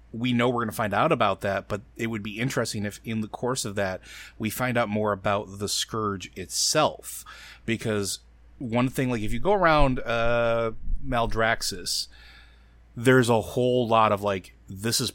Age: 30-49